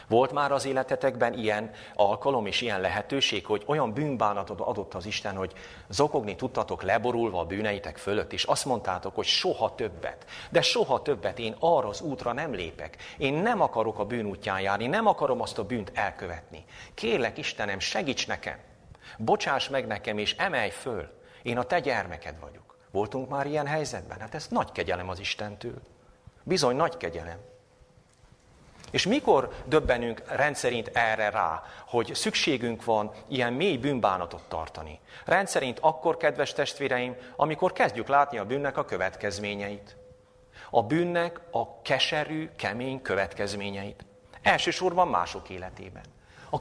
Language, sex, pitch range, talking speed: Hungarian, male, 100-145 Hz, 145 wpm